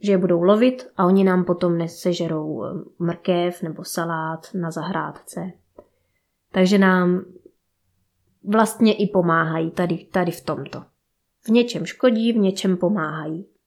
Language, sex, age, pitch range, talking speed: Czech, female, 20-39, 175-205 Hz, 125 wpm